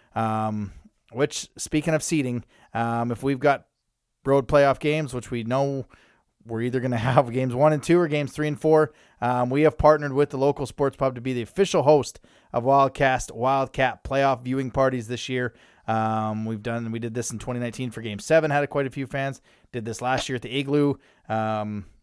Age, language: 20-39, English